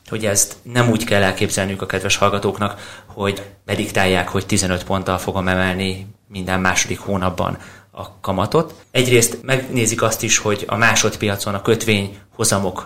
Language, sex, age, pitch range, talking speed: Hungarian, male, 30-49, 100-115 Hz, 145 wpm